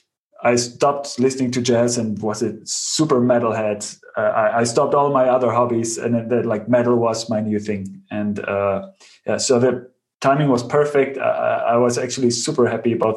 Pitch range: 115-130 Hz